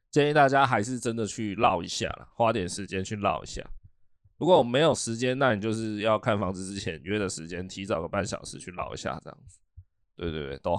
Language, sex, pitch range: Chinese, male, 95-120 Hz